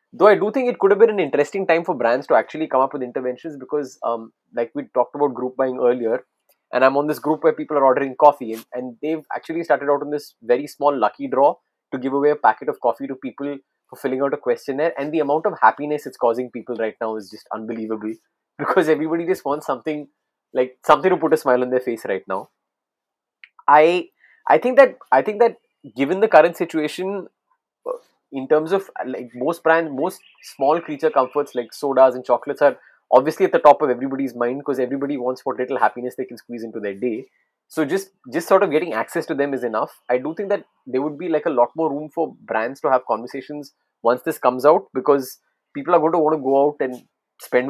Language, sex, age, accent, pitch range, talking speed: English, male, 20-39, Indian, 125-160 Hz, 230 wpm